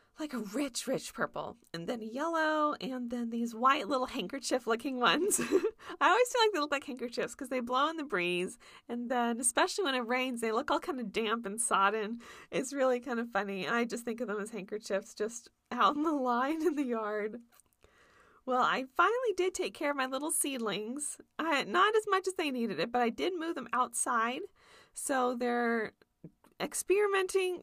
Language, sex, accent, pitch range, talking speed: English, female, American, 235-320 Hz, 195 wpm